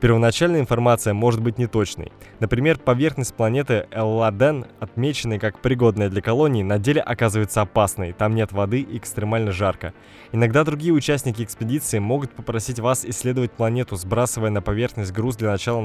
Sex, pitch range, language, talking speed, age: male, 105-125 Hz, Russian, 150 wpm, 20-39